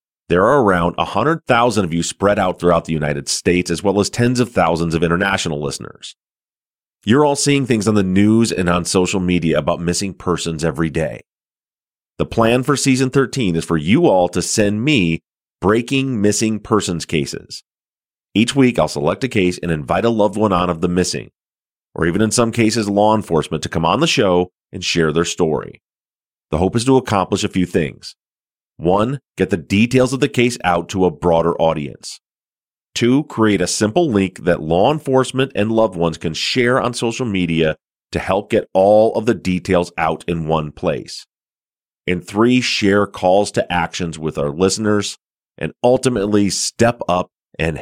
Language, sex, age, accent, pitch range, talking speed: English, male, 30-49, American, 85-115 Hz, 180 wpm